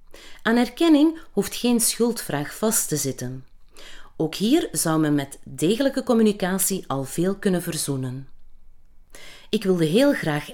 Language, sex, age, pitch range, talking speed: Dutch, female, 30-49, 155-235 Hz, 130 wpm